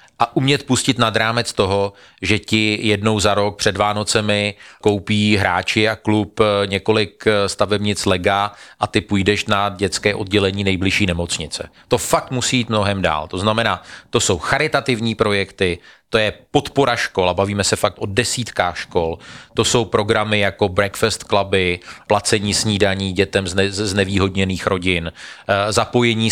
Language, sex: Slovak, male